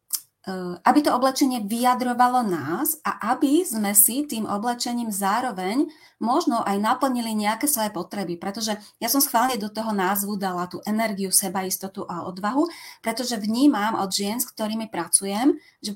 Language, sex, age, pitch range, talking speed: Slovak, female, 30-49, 195-250 Hz, 150 wpm